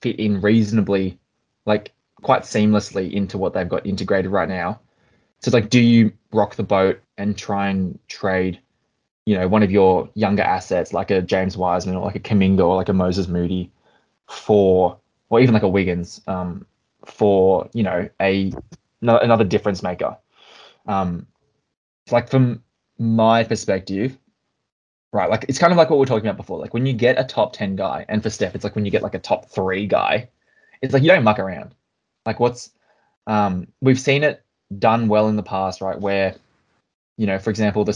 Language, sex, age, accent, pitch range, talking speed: English, male, 20-39, Australian, 95-110 Hz, 190 wpm